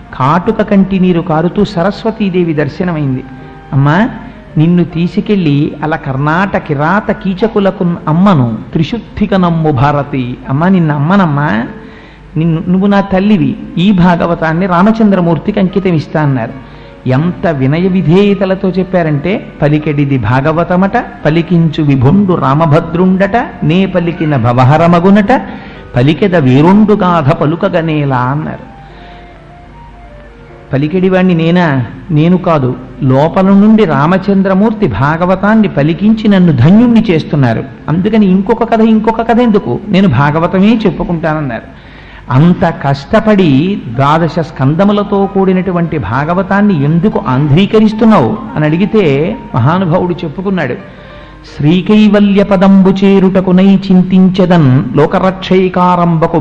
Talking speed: 85 wpm